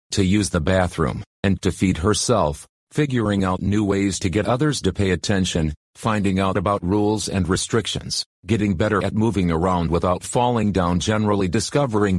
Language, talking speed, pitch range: English, 165 wpm, 90-110 Hz